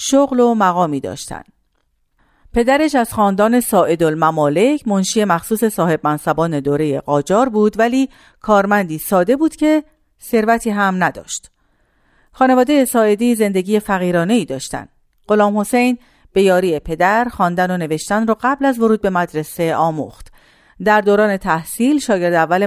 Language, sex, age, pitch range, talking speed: Persian, female, 40-59, 165-235 Hz, 125 wpm